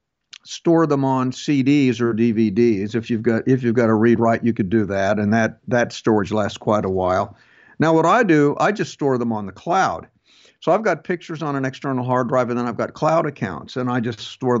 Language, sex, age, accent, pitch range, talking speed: English, male, 50-69, American, 120-160 Hz, 235 wpm